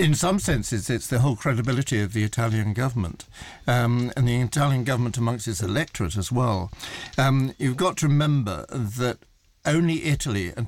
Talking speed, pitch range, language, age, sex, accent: 170 wpm, 115-140 Hz, English, 60-79, male, British